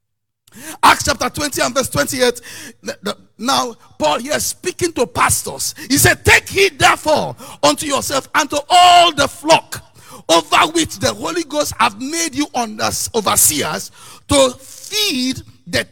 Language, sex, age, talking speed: English, male, 50-69, 140 wpm